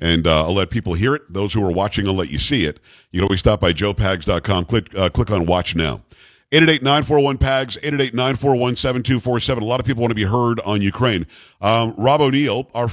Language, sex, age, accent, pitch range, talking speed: English, male, 50-69, American, 100-135 Hz, 215 wpm